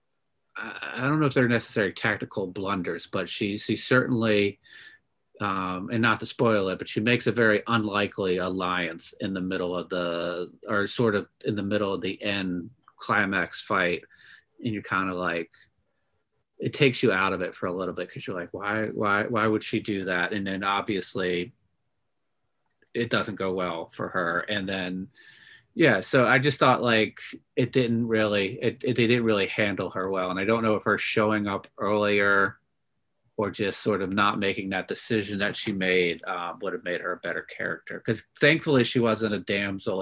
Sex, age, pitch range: male, 30-49, 95-110 Hz